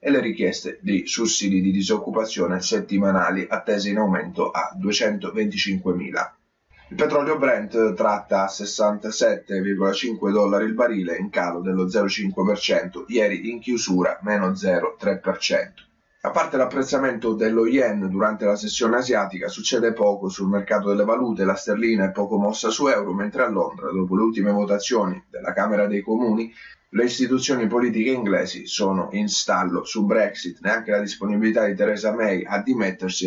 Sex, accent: male, native